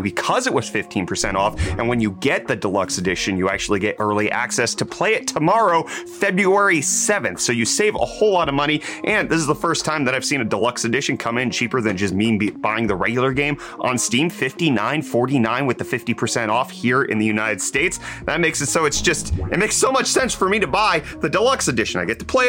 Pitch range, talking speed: 110-165 Hz, 230 wpm